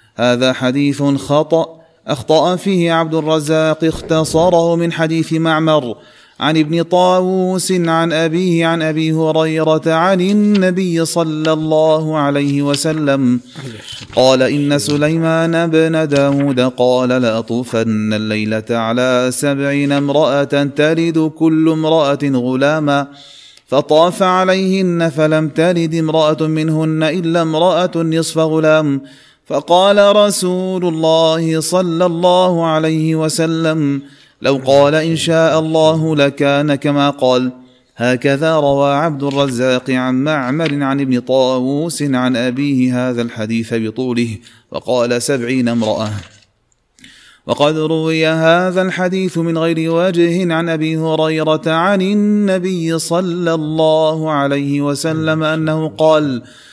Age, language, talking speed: 30-49, Arabic, 105 wpm